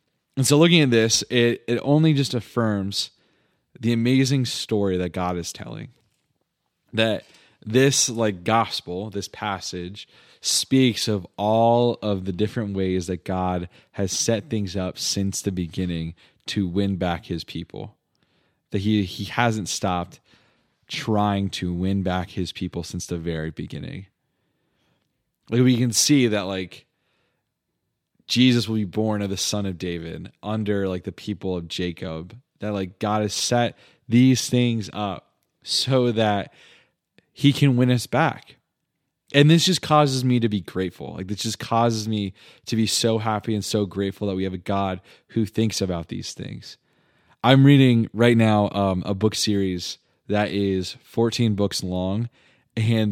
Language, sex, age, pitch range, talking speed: English, male, 20-39, 95-115 Hz, 155 wpm